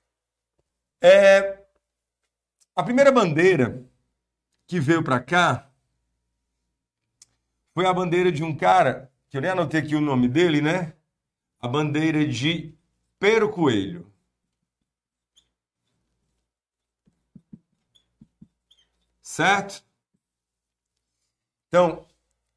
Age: 50-69